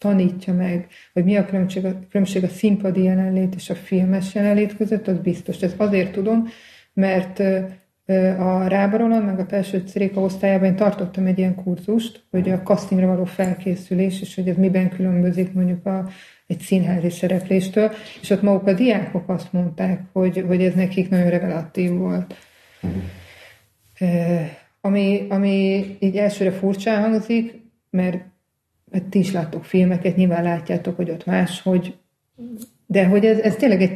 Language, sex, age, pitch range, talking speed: Hungarian, female, 30-49, 175-195 Hz, 150 wpm